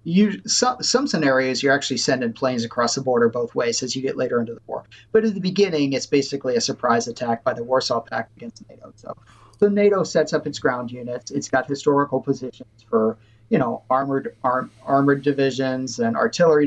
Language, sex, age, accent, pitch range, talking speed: English, male, 40-59, American, 120-155 Hz, 195 wpm